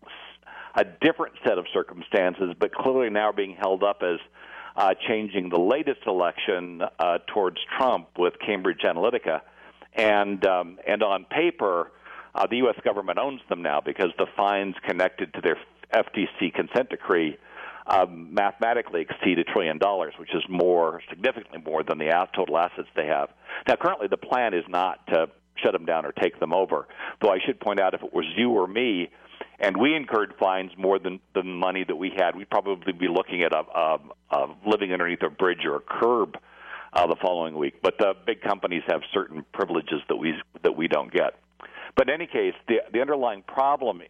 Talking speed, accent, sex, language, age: 180 wpm, American, male, English, 60-79